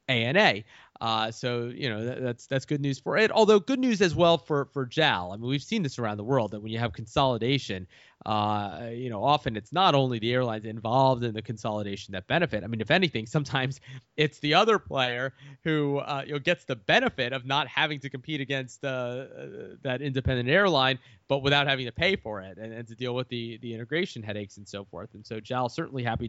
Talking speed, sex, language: 225 wpm, male, English